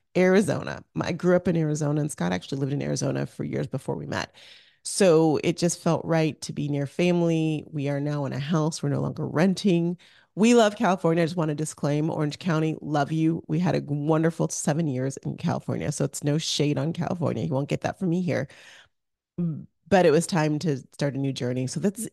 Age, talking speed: 30-49, 215 wpm